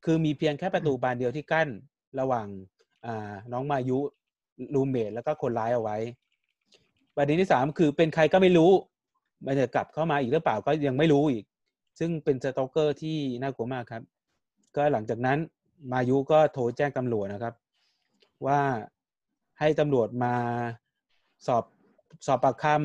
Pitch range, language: 120-155 Hz, Thai